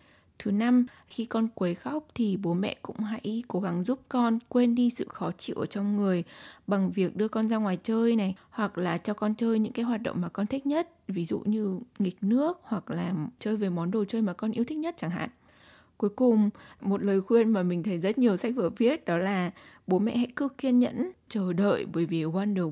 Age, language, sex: 20-39, Vietnamese, female